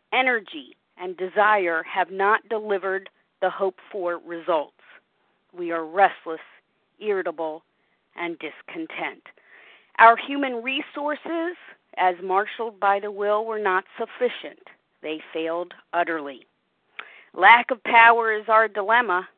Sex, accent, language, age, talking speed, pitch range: female, American, English, 50-69, 110 wpm, 185-250 Hz